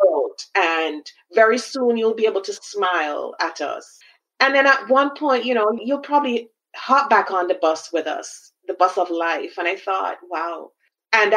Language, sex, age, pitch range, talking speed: English, female, 30-49, 165-235 Hz, 185 wpm